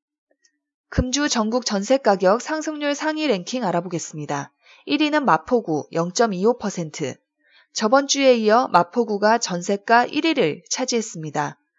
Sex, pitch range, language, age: female, 200-295 Hz, Korean, 20-39